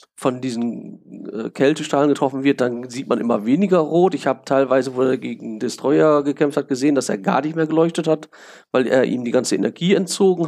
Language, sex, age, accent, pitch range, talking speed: German, male, 40-59, German, 130-155 Hz, 205 wpm